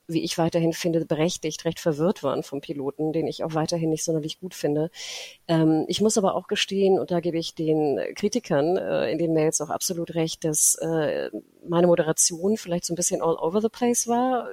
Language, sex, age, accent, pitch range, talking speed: German, female, 30-49, German, 165-190 Hz, 195 wpm